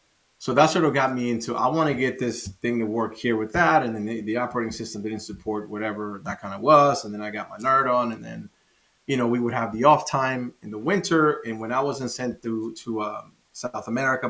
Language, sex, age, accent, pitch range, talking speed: English, male, 30-49, American, 110-130 Hz, 255 wpm